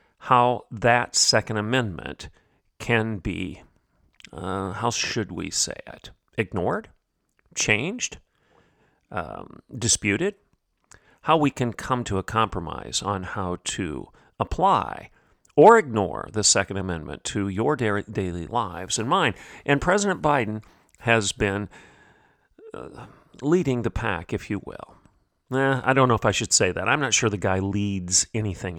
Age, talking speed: 50-69, 135 wpm